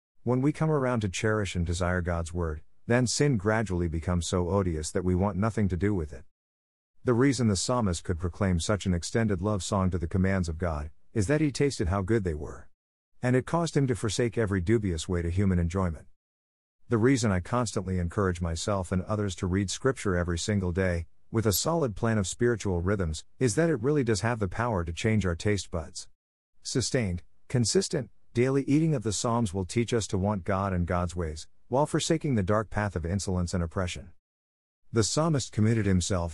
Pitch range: 90-115 Hz